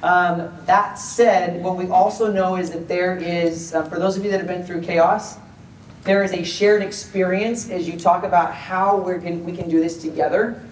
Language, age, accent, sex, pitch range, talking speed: English, 30-49, American, male, 165-195 Hz, 205 wpm